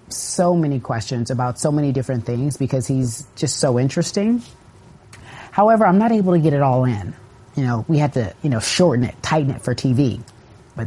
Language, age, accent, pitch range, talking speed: English, 30-49, American, 125-155 Hz, 200 wpm